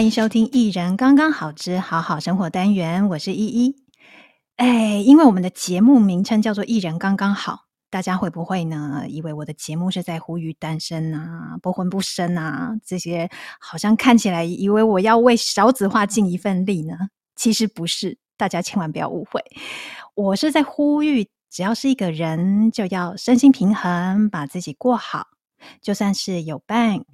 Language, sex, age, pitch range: Chinese, female, 20-39, 170-230 Hz